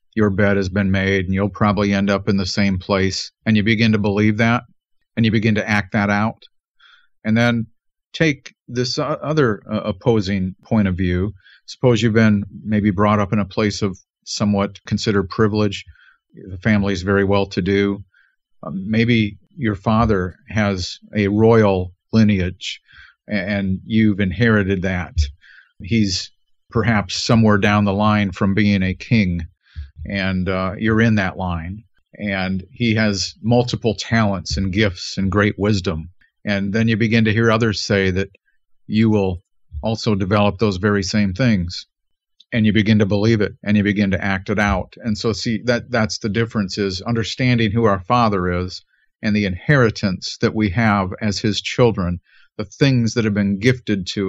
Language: English